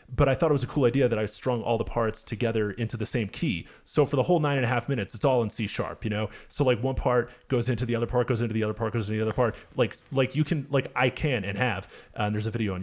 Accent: American